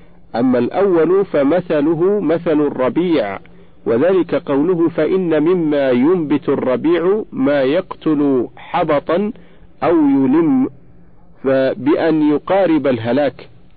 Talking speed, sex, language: 85 wpm, male, Arabic